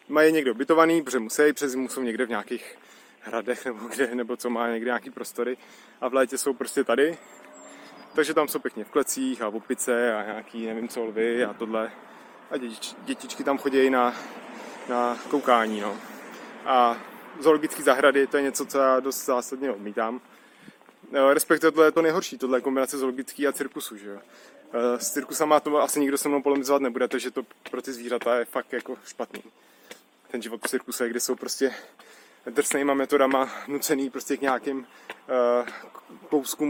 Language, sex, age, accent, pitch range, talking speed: Czech, male, 20-39, native, 120-140 Hz, 170 wpm